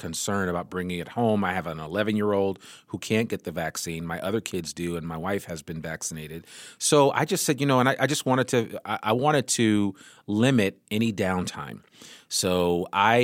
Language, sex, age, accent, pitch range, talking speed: English, male, 30-49, American, 90-115 Hz, 215 wpm